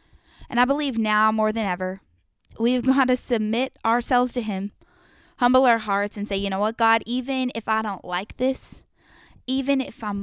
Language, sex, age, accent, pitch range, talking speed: English, female, 10-29, American, 205-250 Hz, 190 wpm